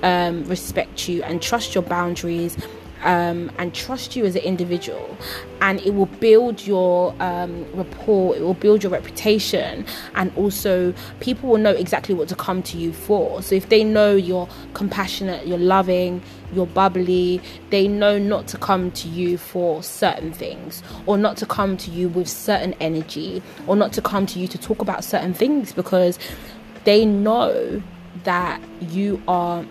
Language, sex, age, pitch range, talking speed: English, female, 20-39, 175-205 Hz, 170 wpm